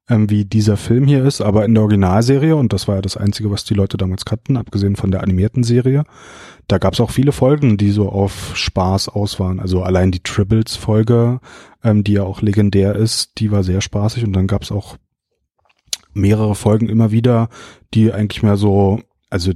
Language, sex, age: German, male, 30-49